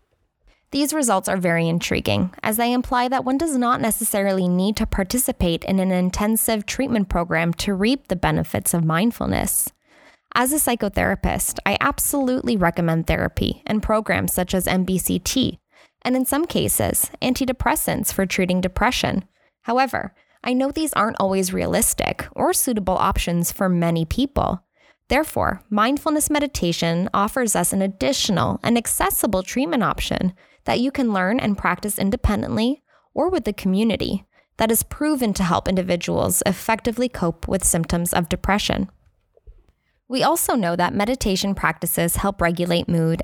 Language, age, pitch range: English, 10-29, 185-250 Hz